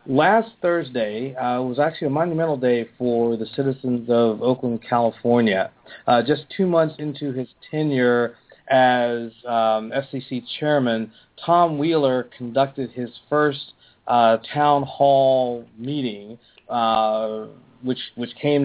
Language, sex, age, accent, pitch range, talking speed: English, male, 40-59, American, 120-140 Hz, 120 wpm